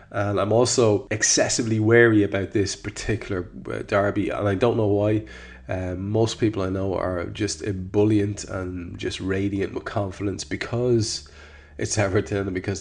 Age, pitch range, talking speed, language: 20-39, 90-105 Hz, 150 wpm, English